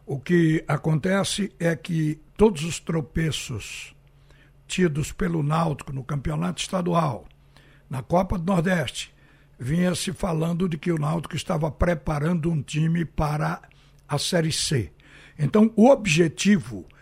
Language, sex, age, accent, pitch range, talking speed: Portuguese, male, 60-79, Brazilian, 155-190 Hz, 125 wpm